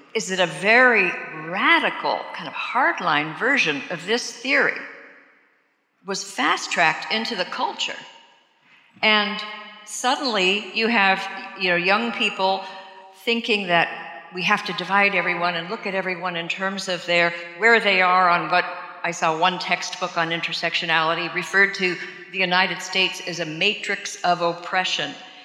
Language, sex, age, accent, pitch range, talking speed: English, female, 50-69, American, 175-220 Hz, 145 wpm